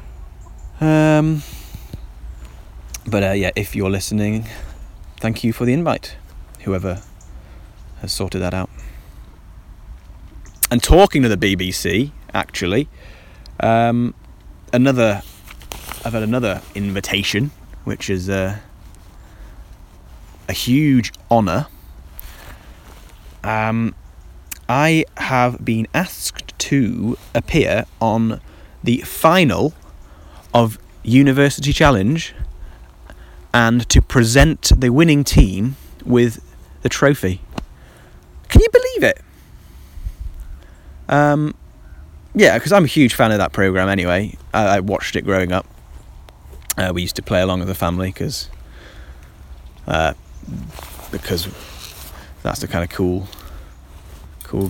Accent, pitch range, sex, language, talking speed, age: British, 75-115 Hz, male, English, 105 wpm, 20-39